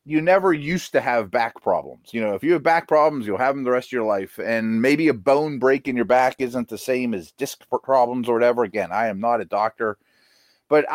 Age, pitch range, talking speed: 30-49, 115-165 Hz, 245 wpm